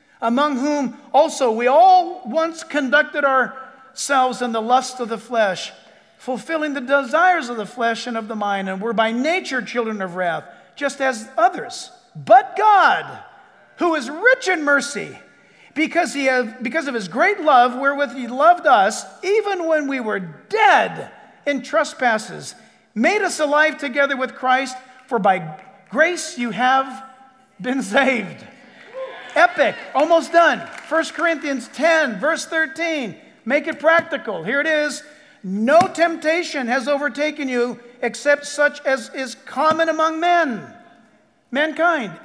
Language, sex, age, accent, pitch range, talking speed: English, male, 50-69, American, 255-320 Hz, 140 wpm